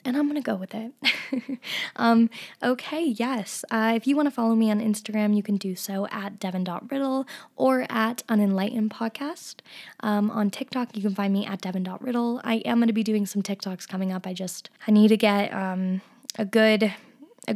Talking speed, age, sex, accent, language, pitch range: 190 wpm, 10-29, female, American, English, 200-235 Hz